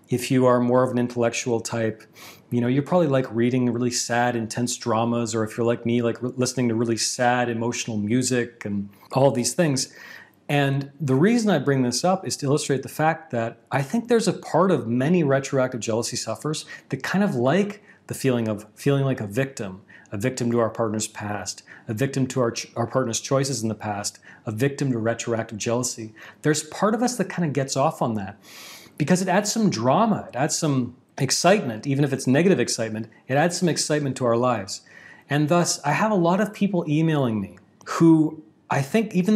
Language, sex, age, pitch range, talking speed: English, male, 40-59, 115-145 Hz, 205 wpm